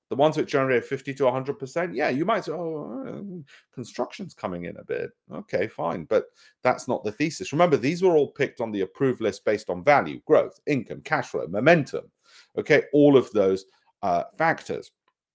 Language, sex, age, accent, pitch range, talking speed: English, male, 40-59, British, 105-170 Hz, 190 wpm